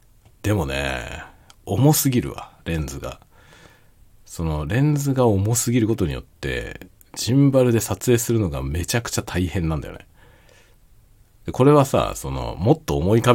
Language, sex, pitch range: Japanese, male, 80-120 Hz